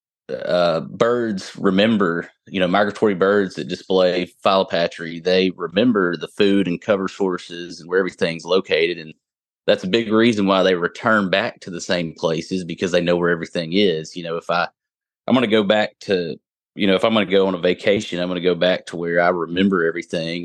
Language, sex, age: English, male, 30-49